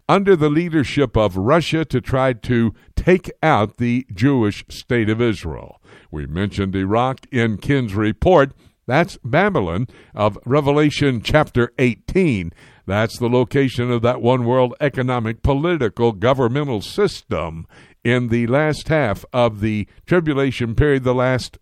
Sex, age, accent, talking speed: male, 60-79, American, 135 wpm